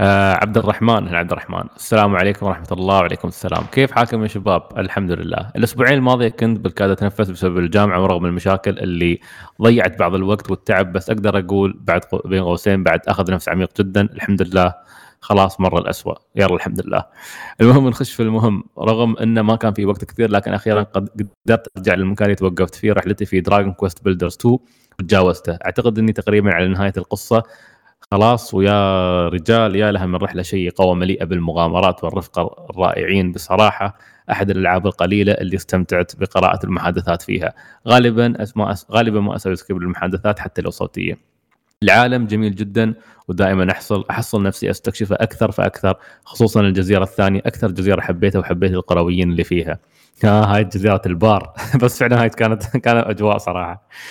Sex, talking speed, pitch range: male, 160 wpm, 95-115 Hz